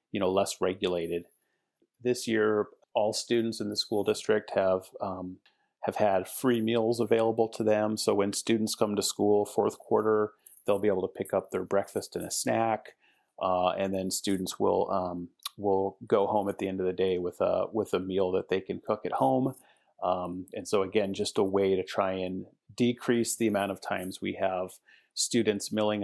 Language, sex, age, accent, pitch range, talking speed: English, male, 30-49, American, 95-110 Hz, 195 wpm